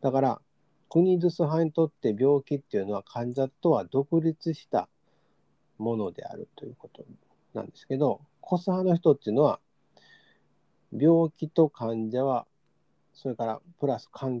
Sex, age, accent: male, 40-59, native